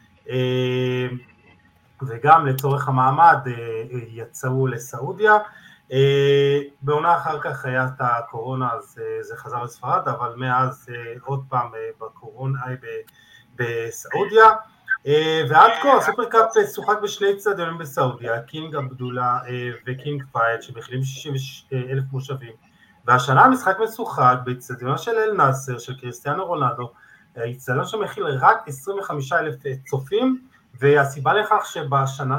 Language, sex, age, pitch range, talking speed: Hebrew, male, 30-49, 125-160 Hz, 105 wpm